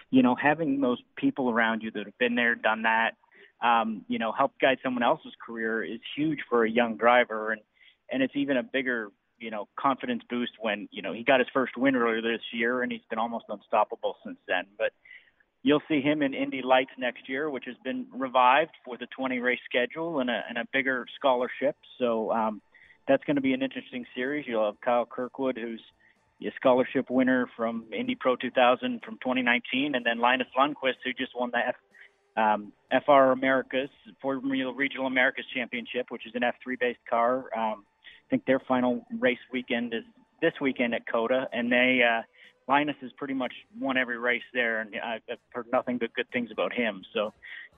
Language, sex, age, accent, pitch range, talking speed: English, male, 30-49, American, 120-135 Hz, 195 wpm